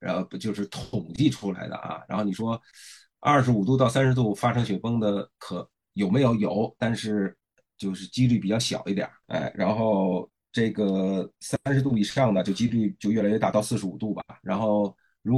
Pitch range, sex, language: 100-125 Hz, male, Chinese